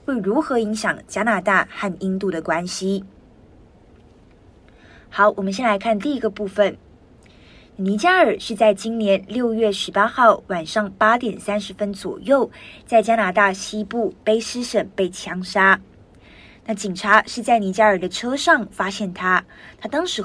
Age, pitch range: 20-39, 195-230 Hz